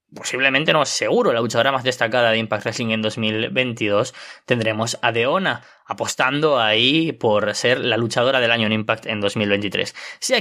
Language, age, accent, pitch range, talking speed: Spanish, 20-39, Spanish, 110-130 Hz, 160 wpm